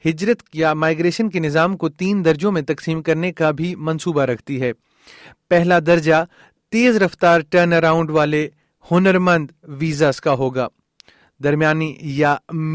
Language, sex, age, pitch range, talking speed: Urdu, male, 30-49, 150-175 Hz, 120 wpm